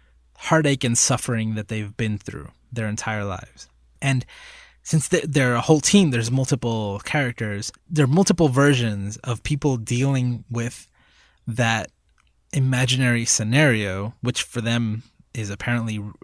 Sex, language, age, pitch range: male, English, 20-39, 110-135 Hz